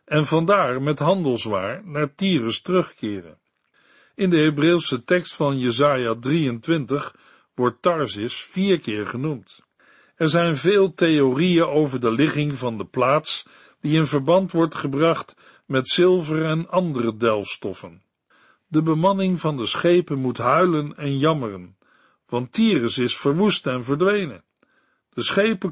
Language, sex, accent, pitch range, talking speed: Dutch, male, Dutch, 130-180 Hz, 130 wpm